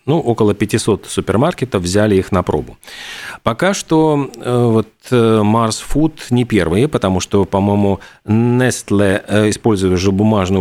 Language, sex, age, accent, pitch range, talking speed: Russian, male, 40-59, native, 95-125 Hz, 125 wpm